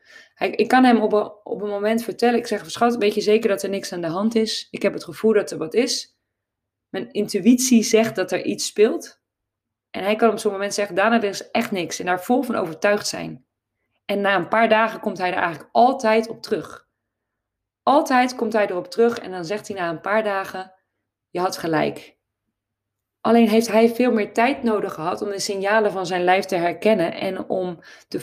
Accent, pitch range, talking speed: Dutch, 180-225 Hz, 210 wpm